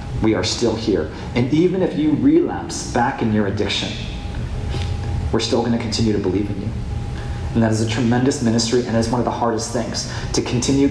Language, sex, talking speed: English, male, 205 wpm